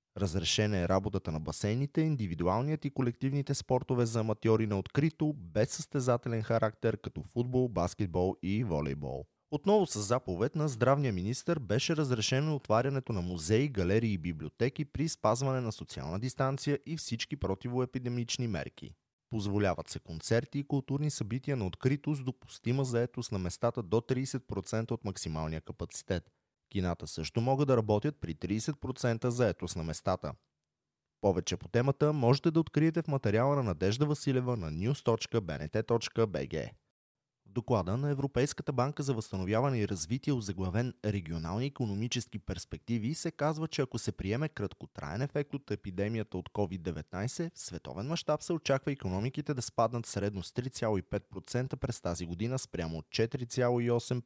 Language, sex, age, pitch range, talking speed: Bulgarian, male, 30-49, 95-135 Hz, 145 wpm